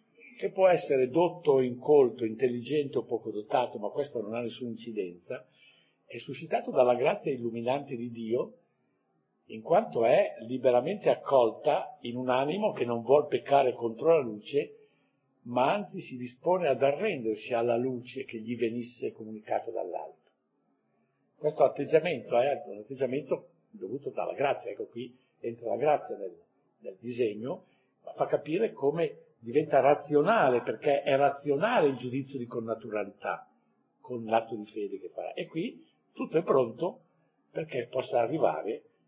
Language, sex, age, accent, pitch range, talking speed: Italian, male, 50-69, native, 115-145 Hz, 145 wpm